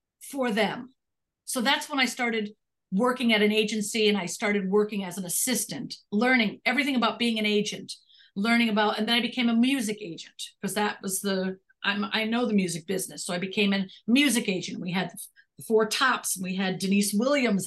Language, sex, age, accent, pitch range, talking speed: English, female, 50-69, American, 200-255 Hz, 200 wpm